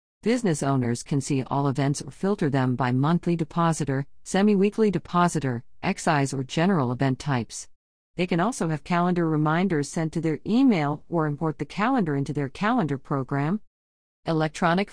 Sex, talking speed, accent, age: female, 155 wpm, American, 40-59